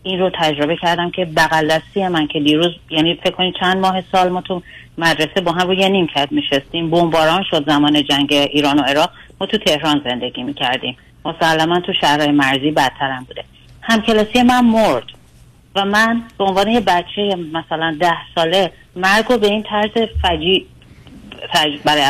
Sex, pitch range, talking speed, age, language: female, 160-200 Hz, 175 wpm, 40-59, Persian